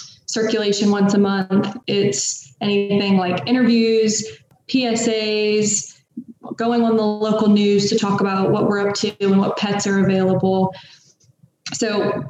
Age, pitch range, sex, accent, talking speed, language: 20-39, 195-215 Hz, female, American, 130 wpm, English